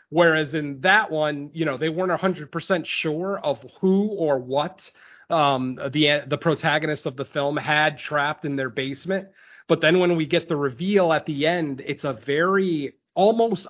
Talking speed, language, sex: 185 wpm, English, male